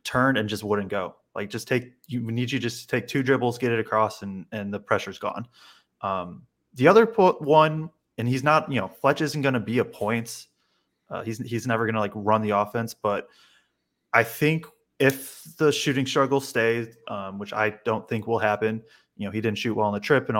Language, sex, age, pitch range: English, male, 20-39, 110-135 Hz